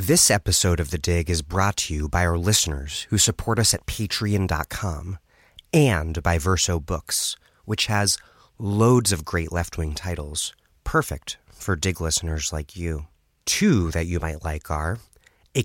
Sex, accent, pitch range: male, American, 85-110 Hz